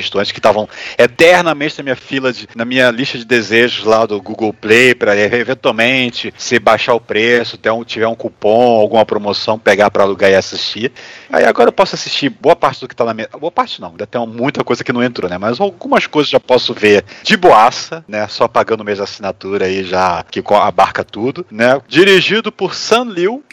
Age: 40-59